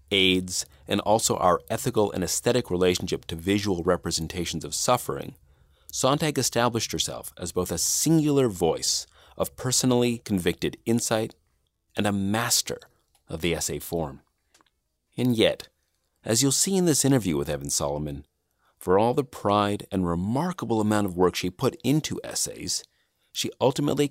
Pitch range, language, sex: 85-120 Hz, English, male